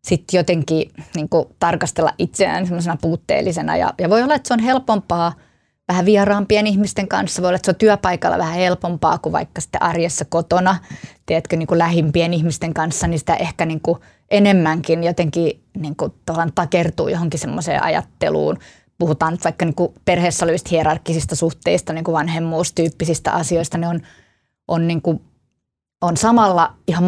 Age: 20-39